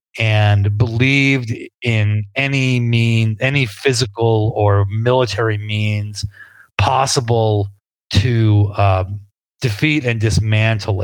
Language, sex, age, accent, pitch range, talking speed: English, male, 30-49, American, 100-115 Hz, 85 wpm